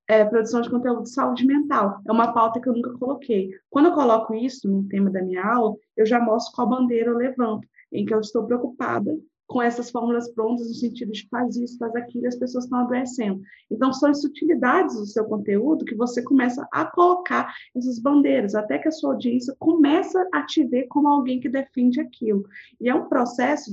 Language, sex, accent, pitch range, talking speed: Portuguese, female, Brazilian, 215-280 Hz, 210 wpm